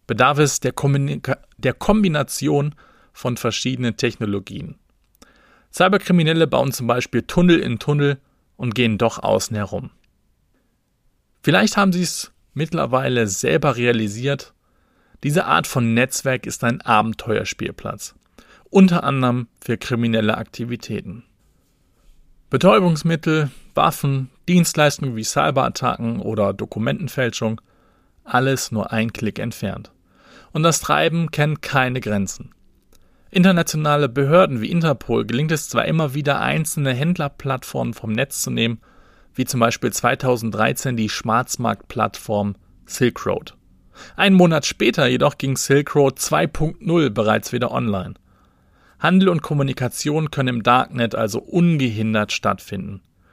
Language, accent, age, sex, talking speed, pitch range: German, German, 40-59, male, 110 wpm, 115-150 Hz